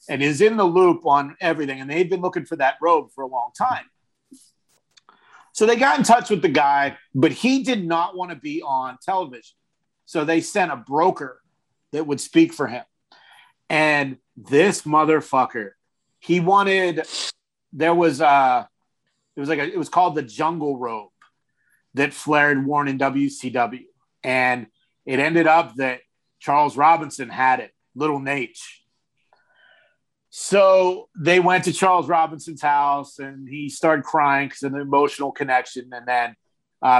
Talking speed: 160 wpm